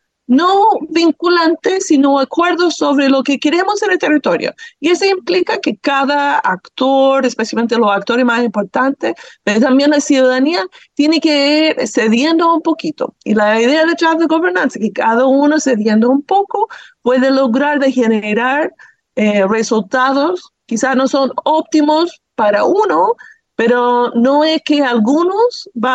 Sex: female